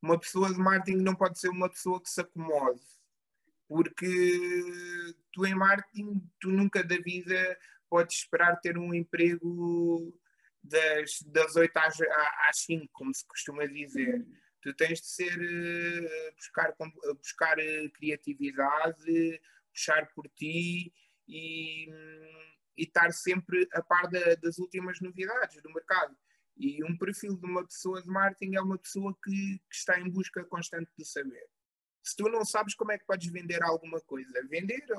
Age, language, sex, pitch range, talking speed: 20-39, Portuguese, male, 165-190 Hz, 150 wpm